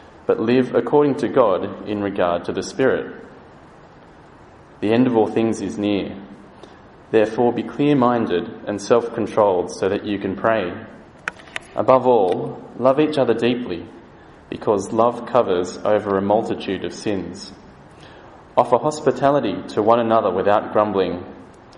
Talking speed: 130 wpm